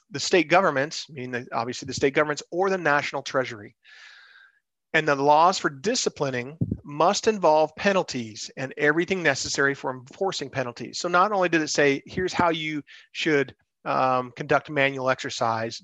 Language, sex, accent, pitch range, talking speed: English, male, American, 130-175 Hz, 150 wpm